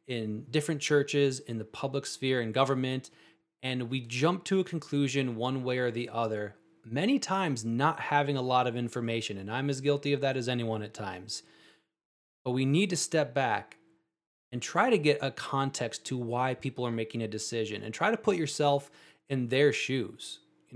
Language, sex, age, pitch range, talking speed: English, male, 20-39, 115-145 Hz, 190 wpm